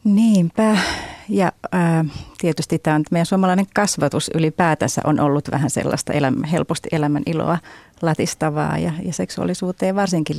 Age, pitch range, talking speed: 30-49, 150-190 Hz, 140 wpm